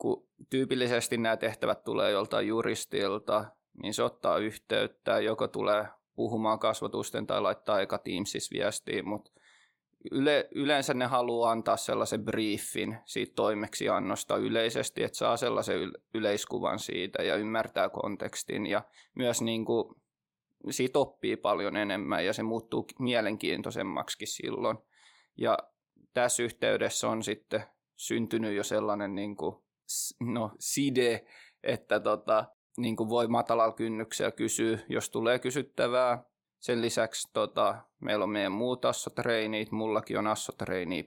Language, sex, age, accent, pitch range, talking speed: Finnish, male, 20-39, native, 110-120 Hz, 110 wpm